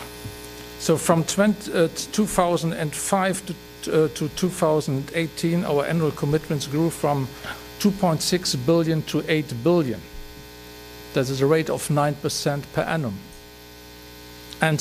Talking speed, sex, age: 110 wpm, male, 50-69